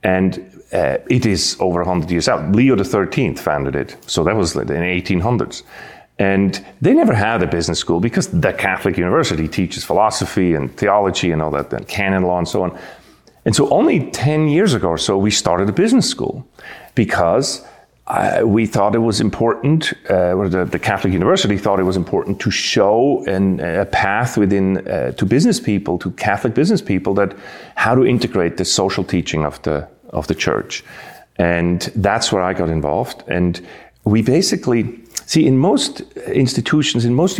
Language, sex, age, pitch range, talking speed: English, male, 30-49, 90-105 Hz, 180 wpm